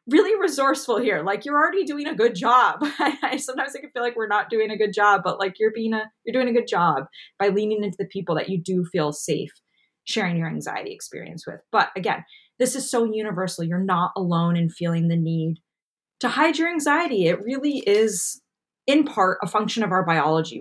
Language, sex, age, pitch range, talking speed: English, female, 20-39, 175-245 Hz, 215 wpm